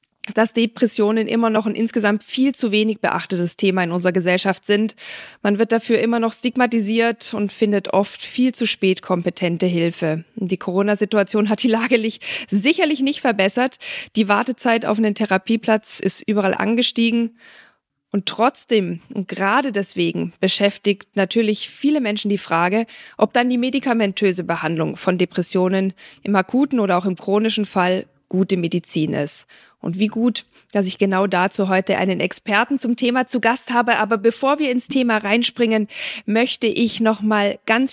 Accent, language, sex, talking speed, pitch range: German, German, female, 155 wpm, 190-230 Hz